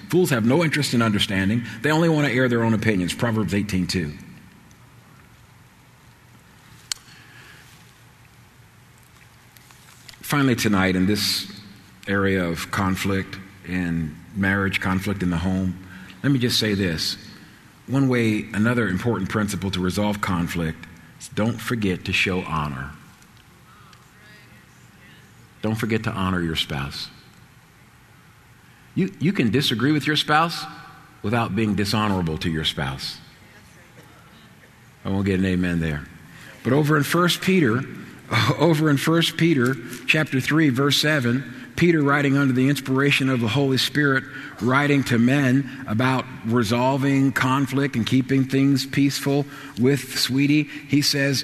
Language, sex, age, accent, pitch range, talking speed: English, male, 50-69, American, 100-140 Hz, 125 wpm